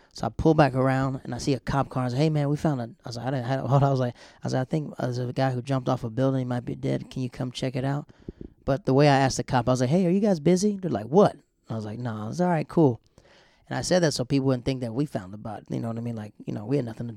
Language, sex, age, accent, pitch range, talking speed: English, male, 30-49, American, 115-160 Hz, 340 wpm